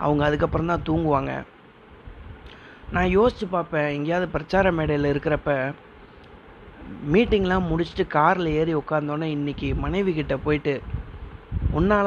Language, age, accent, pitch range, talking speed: Tamil, 30-49, native, 145-180 Hz, 100 wpm